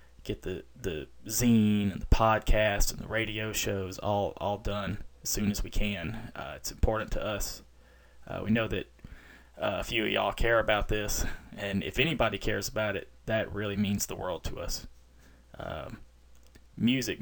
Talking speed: 180 wpm